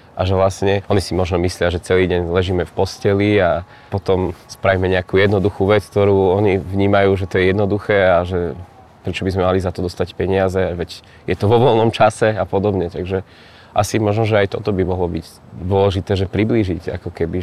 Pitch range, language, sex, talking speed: 90-100 Hz, Slovak, male, 200 wpm